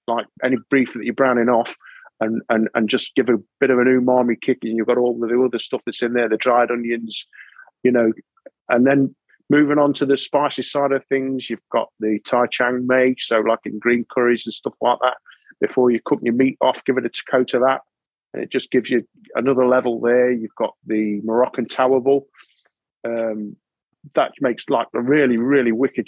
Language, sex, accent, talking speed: English, male, British, 210 wpm